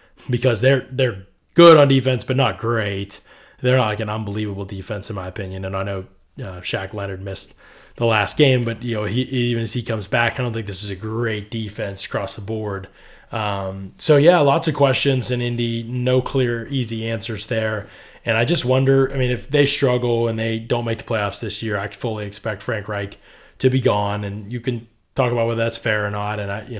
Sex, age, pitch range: male, 20-39, 105-135 Hz